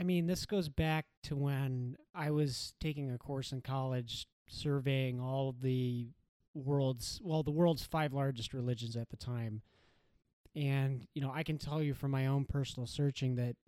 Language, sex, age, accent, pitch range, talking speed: English, male, 30-49, American, 125-150 Hz, 175 wpm